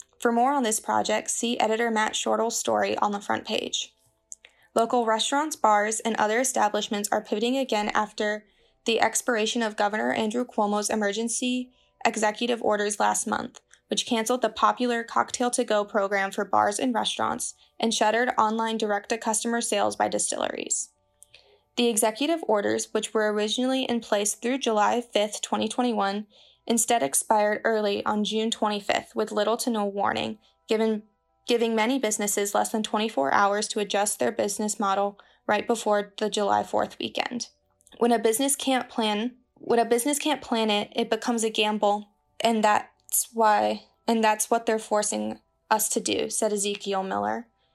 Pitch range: 210-235 Hz